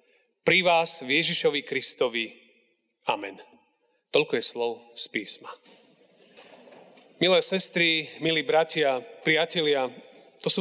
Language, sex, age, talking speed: Slovak, male, 40-59, 95 wpm